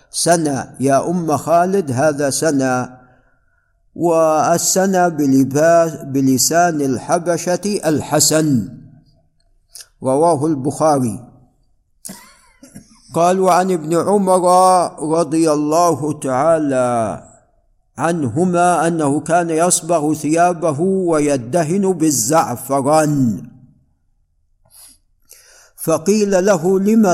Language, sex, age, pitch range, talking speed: Arabic, male, 50-69, 145-175 Hz, 65 wpm